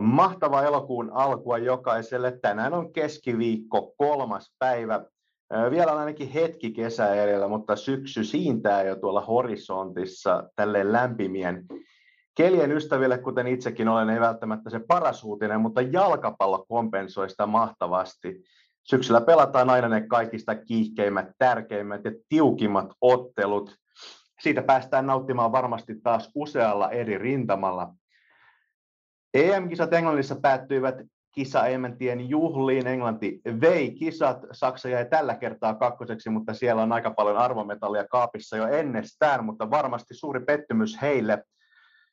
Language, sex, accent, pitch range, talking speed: Finnish, male, native, 110-135 Hz, 120 wpm